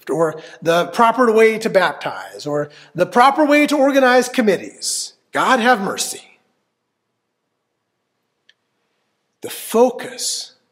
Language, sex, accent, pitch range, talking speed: English, male, American, 145-220 Hz, 100 wpm